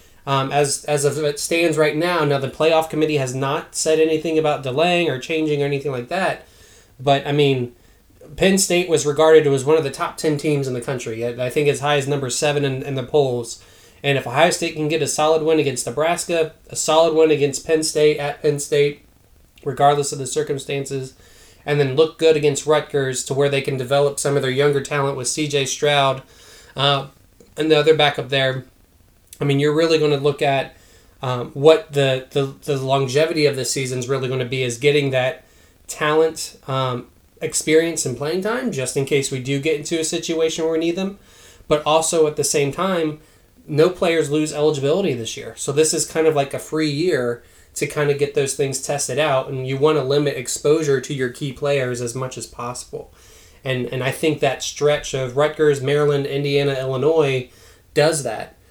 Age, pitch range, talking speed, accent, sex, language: 20-39, 130-155 Hz, 205 wpm, American, male, English